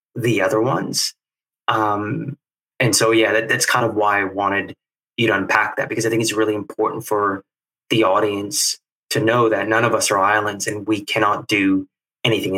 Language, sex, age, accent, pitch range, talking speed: English, male, 20-39, American, 100-110 Hz, 185 wpm